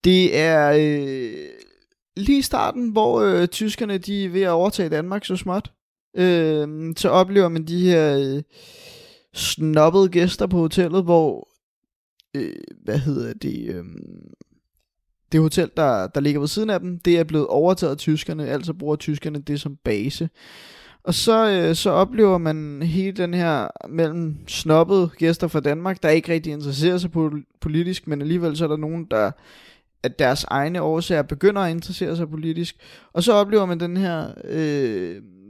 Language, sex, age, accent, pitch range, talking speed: Danish, male, 20-39, native, 150-180 Hz, 150 wpm